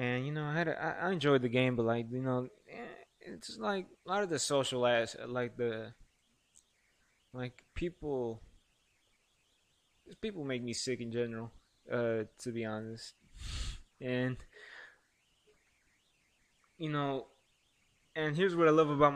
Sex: male